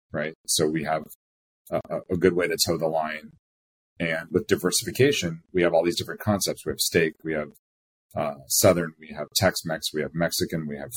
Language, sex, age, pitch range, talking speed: English, male, 30-49, 75-90 Hz, 195 wpm